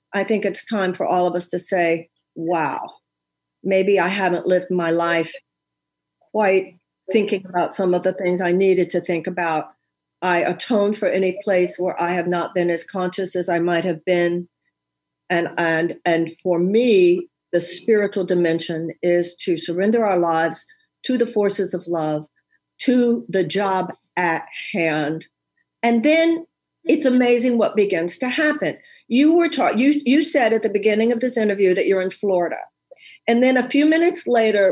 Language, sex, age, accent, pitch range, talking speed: English, female, 50-69, American, 180-250 Hz, 170 wpm